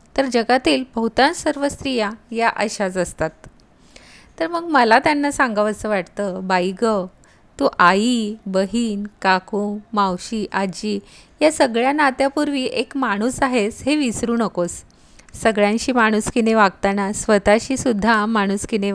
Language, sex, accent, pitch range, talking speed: Marathi, female, native, 200-255 Hz, 120 wpm